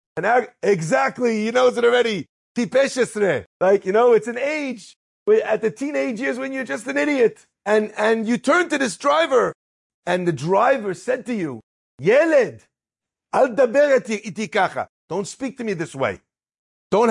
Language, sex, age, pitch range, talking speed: English, male, 50-69, 185-255 Hz, 145 wpm